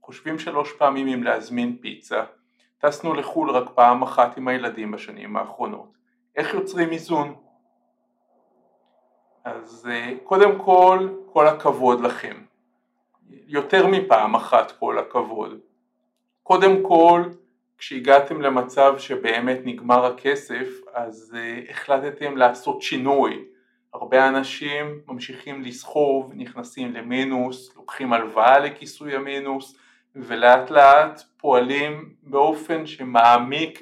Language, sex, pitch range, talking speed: Hebrew, male, 125-165 Hz, 100 wpm